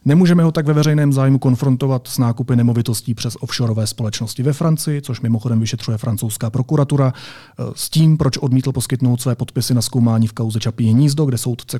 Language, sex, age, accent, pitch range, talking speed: Czech, male, 30-49, native, 115-135 Hz, 175 wpm